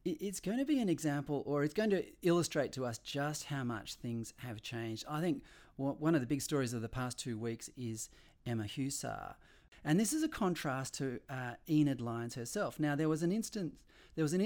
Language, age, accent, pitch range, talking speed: English, 30-49, Australian, 130-170 Hz, 205 wpm